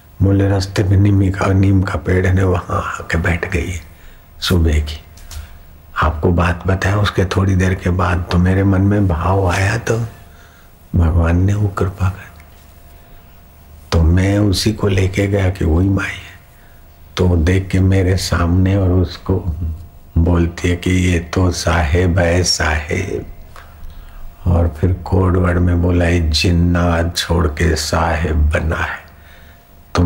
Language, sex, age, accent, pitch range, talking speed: Hindi, male, 60-79, native, 80-90 Hz, 140 wpm